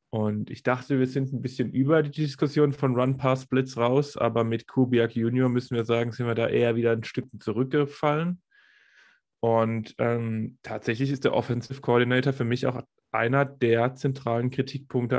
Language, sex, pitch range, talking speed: German, male, 115-140 Hz, 165 wpm